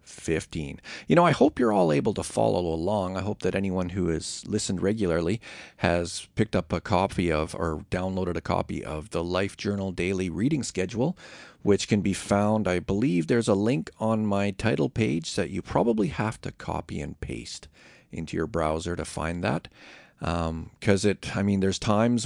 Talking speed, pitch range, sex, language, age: 190 wpm, 85-110 Hz, male, English, 40-59